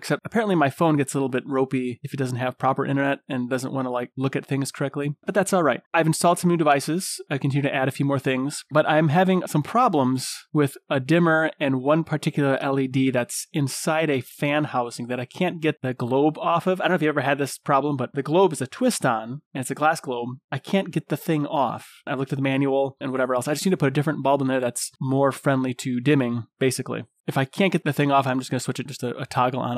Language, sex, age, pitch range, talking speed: English, male, 30-49, 130-155 Hz, 270 wpm